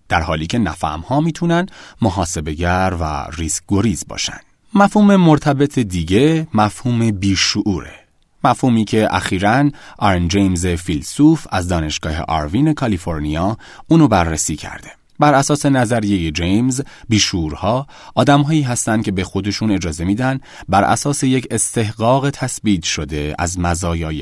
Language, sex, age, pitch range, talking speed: Persian, male, 30-49, 85-130 Hz, 120 wpm